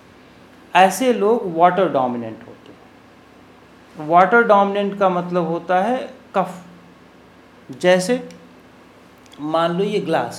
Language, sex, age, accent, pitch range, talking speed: Hindi, male, 50-69, native, 155-230 Hz, 105 wpm